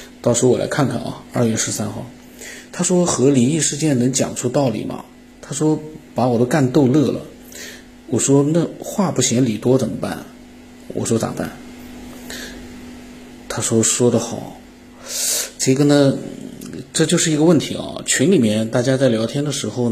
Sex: male